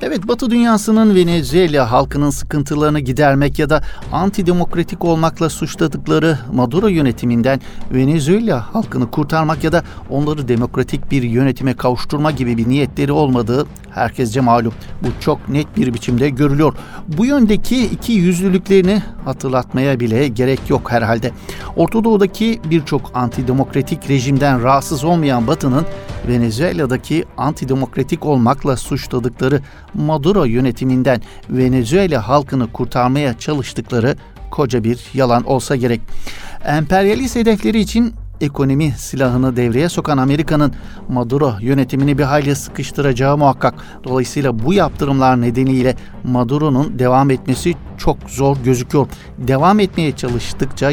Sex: male